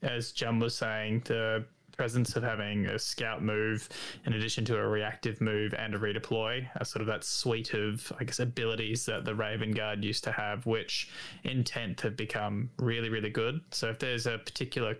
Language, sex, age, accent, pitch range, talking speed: English, male, 20-39, Australian, 110-120 Hz, 190 wpm